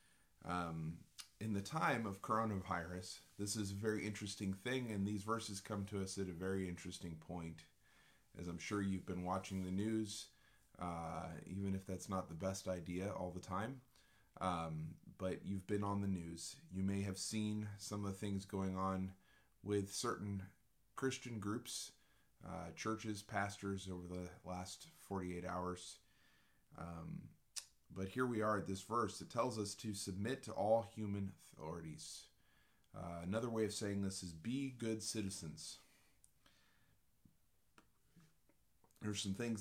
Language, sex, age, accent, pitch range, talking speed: English, male, 30-49, American, 95-110 Hz, 155 wpm